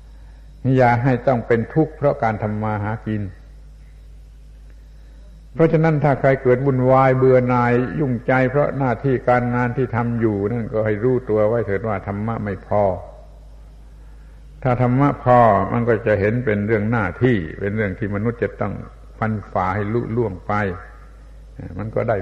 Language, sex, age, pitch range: Thai, male, 60-79, 105-135 Hz